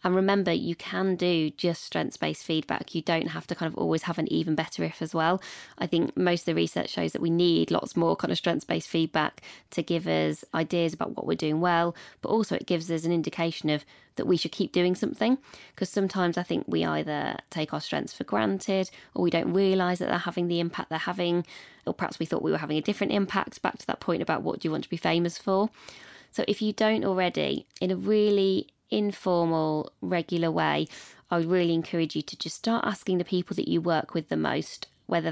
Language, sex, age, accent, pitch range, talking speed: English, female, 20-39, British, 165-190 Hz, 230 wpm